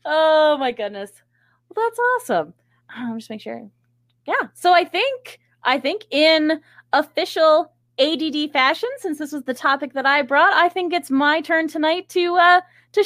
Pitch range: 215-330 Hz